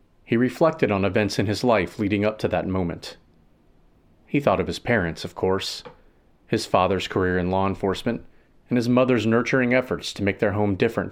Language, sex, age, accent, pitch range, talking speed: English, male, 30-49, American, 95-120 Hz, 190 wpm